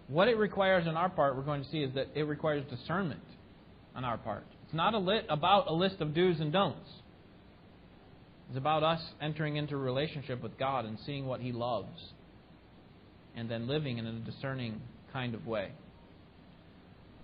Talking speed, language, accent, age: 175 wpm, English, American, 30-49